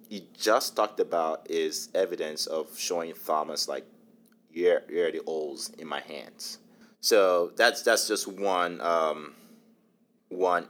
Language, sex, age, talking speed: English, male, 30-49, 140 wpm